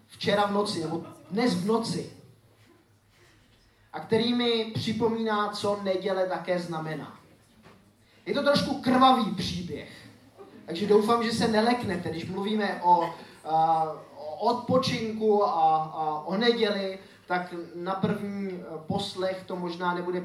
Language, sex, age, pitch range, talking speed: Czech, male, 20-39, 150-205 Hz, 120 wpm